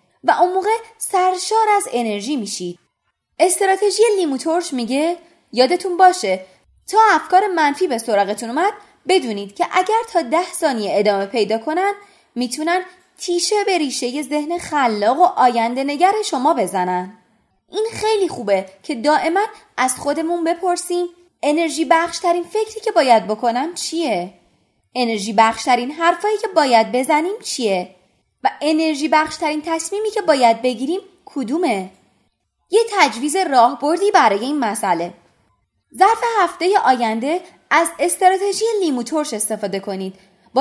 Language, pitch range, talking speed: Persian, 235-370 Hz, 125 wpm